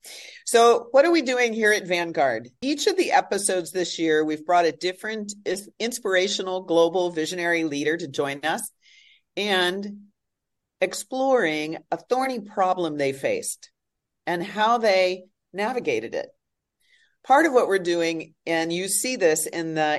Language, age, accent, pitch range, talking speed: English, 40-59, American, 155-205 Hz, 145 wpm